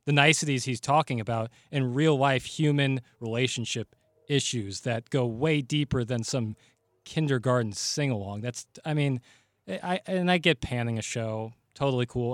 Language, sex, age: English, male, 20-39